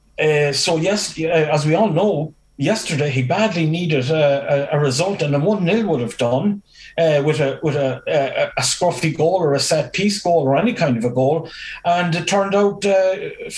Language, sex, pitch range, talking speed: English, male, 150-195 Hz, 180 wpm